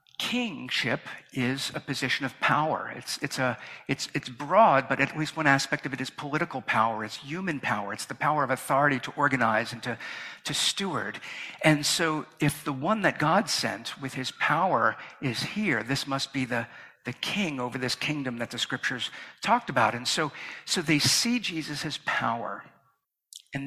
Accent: American